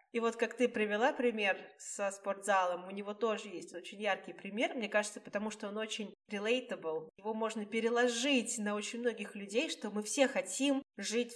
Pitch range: 200-235 Hz